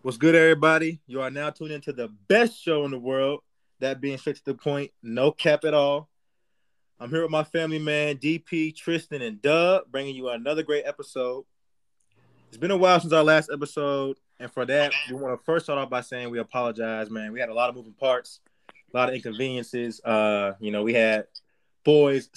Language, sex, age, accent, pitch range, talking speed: English, male, 20-39, American, 115-150 Hz, 210 wpm